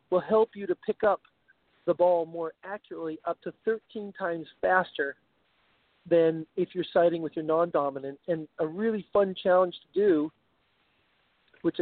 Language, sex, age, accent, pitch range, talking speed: English, male, 40-59, American, 150-180 Hz, 150 wpm